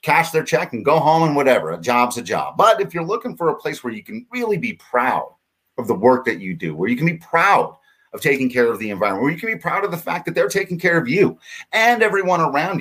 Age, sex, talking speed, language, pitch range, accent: 40-59, male, 275 wpm, English, 115-160 Hz, American